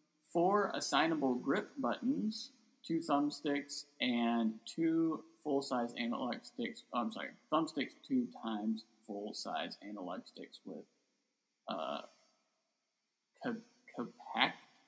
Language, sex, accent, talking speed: English, male, American, 90 wpm